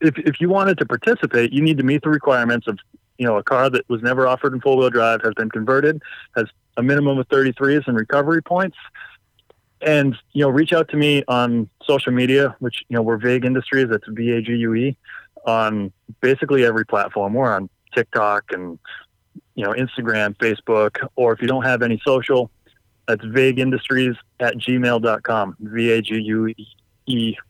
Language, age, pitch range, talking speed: English, 20-39, 115-140 Hz, 170 wpm